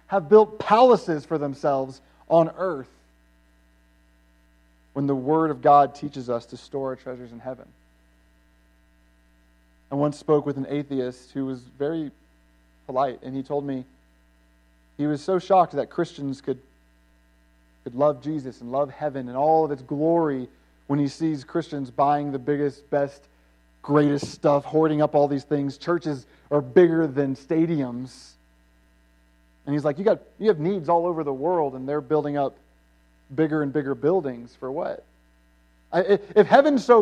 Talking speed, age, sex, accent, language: 160 wpm, 40-59, male, American, English